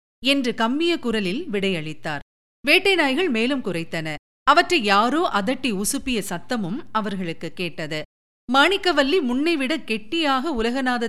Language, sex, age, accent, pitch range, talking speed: Tamil, female, 50-69, native, 190-275 Hz, 95 wpm